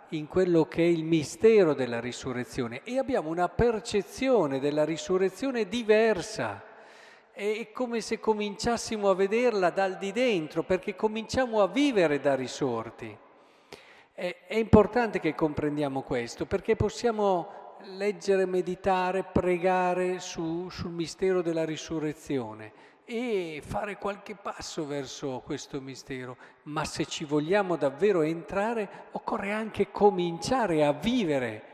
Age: 50-69